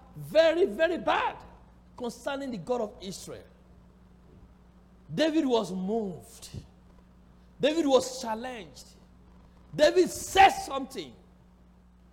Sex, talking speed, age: male, 85 wpm, 60-79